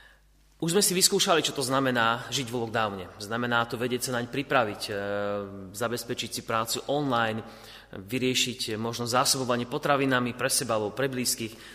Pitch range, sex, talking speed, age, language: 110-135 Hz, male, 150 wpm, 30-49, Slovak